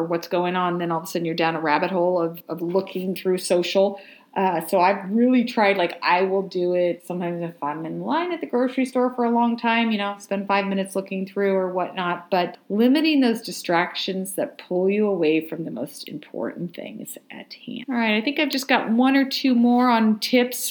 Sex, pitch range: female, 170-215 Hz